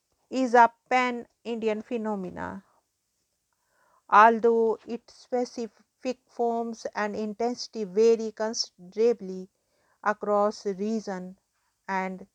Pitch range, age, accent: 205-235 Hz, 50-69, Indian